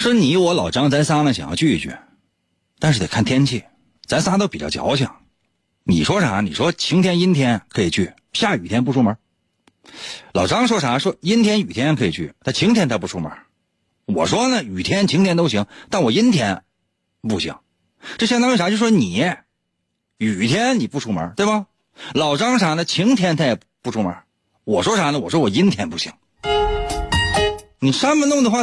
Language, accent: Chinese, native